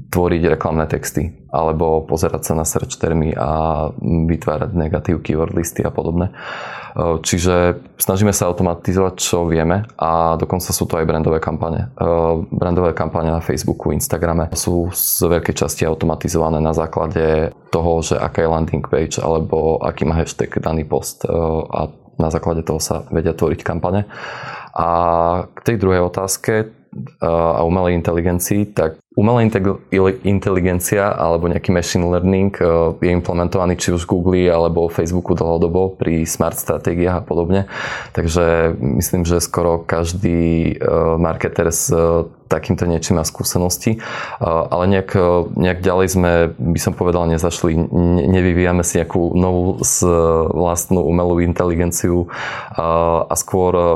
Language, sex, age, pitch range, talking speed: Slovak, male, 20-39, 80-90 Hz, 130 wpm